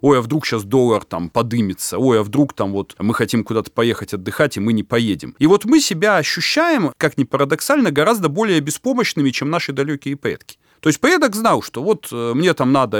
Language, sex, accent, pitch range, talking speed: Russian, male, native, 115-170 Hz, 210 wpm